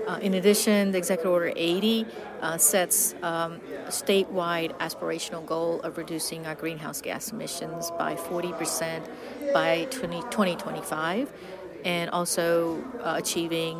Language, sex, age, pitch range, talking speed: English, female, 40-59, 160-190 Hz, 115 wpm